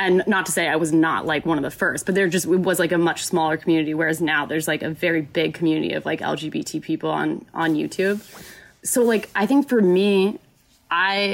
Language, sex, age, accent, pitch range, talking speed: English, female, 20-39, American, 165-200 Hz, 230 wpm